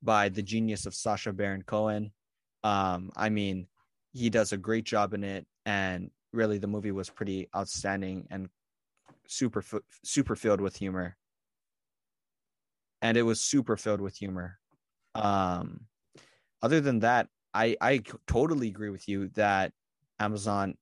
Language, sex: English, male